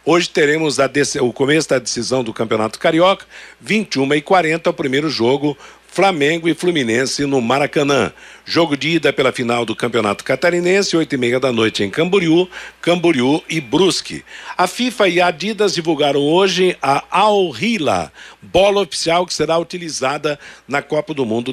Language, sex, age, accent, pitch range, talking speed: Portuguese, male, 60-79, Brazilian, 135-175 Hz, 150 wpm